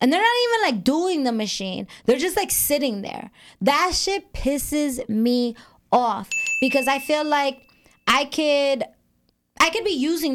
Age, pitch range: 20-39, 230-295 Hz